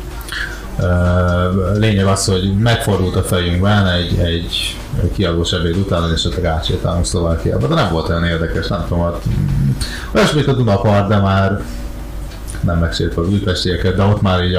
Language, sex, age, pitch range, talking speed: Hungarian, male, 30-49, 85-100 Hz, 140 wpm